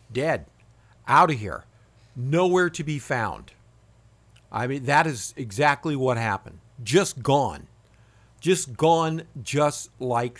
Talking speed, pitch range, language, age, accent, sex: 120 wpm, 115-155 Hz, English, 60-79, American, male